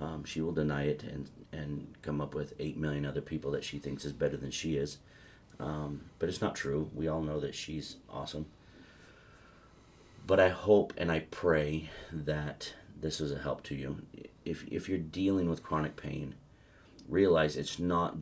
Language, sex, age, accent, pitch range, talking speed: English, male, 30-49, American, 75-80 Hz, 185 wpm